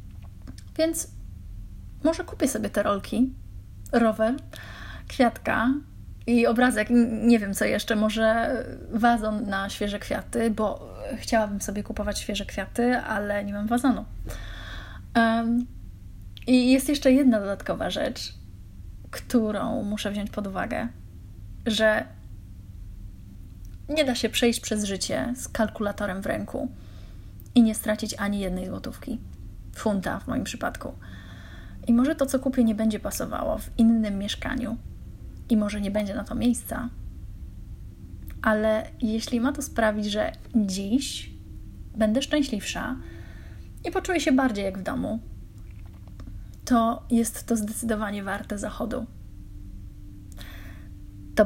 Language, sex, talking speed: Polish, female, 120 wpm